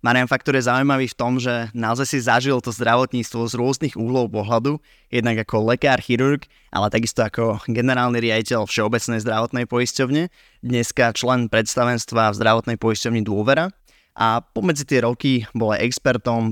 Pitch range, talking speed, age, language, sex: 115-130 Hz, 150 wpm, 20-39, Slovak, male